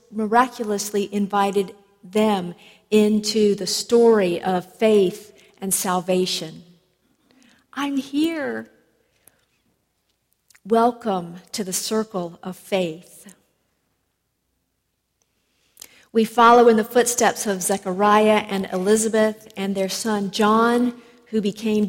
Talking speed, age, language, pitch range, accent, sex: 90 wpm, 50-69, English, 195-230 Hz, American, female